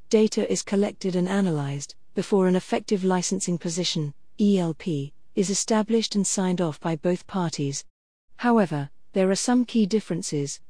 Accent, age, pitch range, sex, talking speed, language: British, 40-59, 165-205 Hz, female, 140 wpm, English